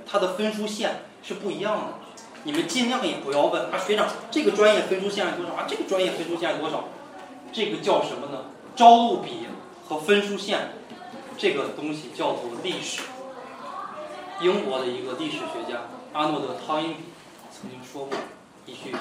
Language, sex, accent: Chinese, male, native